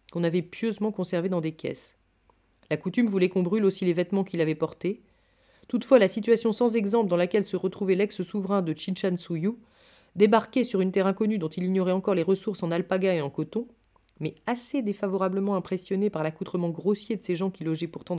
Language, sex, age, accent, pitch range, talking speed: French, female, 30-49, French, 175-220 Hz, 195 wpm